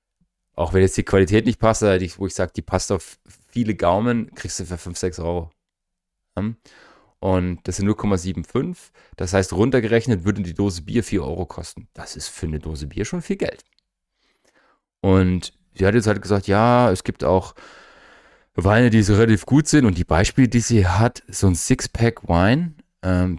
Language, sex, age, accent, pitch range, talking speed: German, male, 30-49, German, 90-110 Hz, 185 wpm